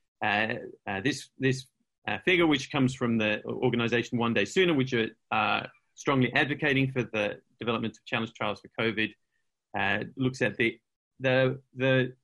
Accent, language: British, English